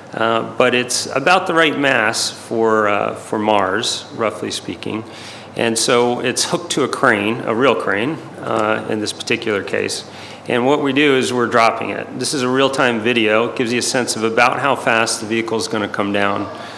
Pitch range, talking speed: 110-125 Hz, 205 wpm